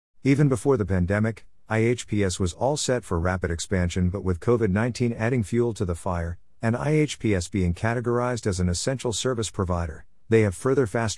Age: 50-69